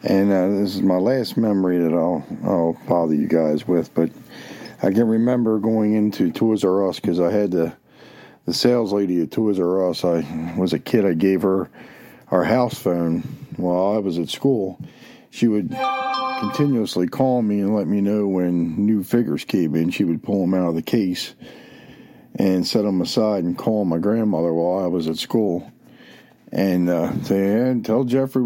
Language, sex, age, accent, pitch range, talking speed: English, male, 50-69, American, 90-110 Hz, 190 wpm